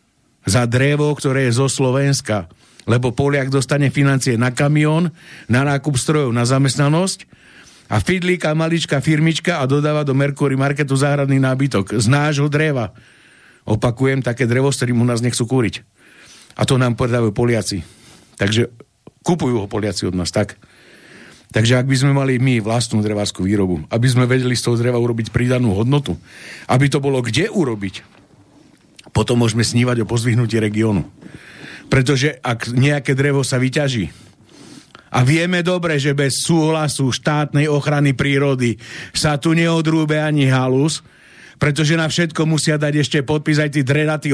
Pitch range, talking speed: 120-150 Hz, 150 wpm